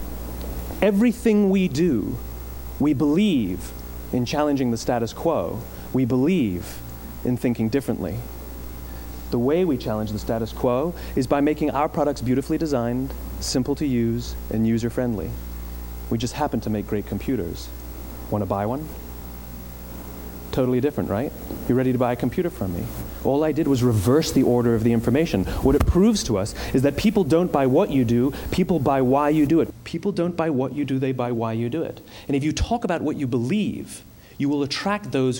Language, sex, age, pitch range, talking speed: English, male, 30-49, 95-145 Hz, 185 wpm